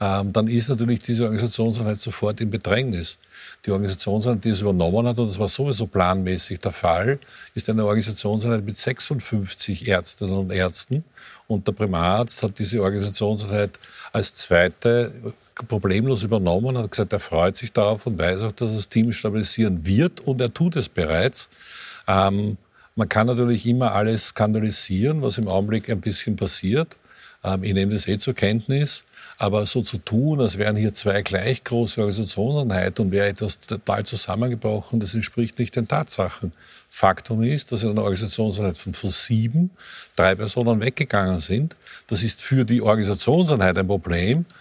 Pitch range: 100-120 Hz